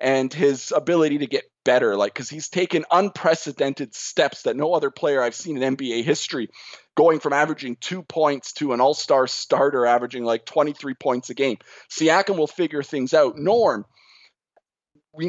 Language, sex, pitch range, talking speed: English, male, 140-180 Hz, 170 wpm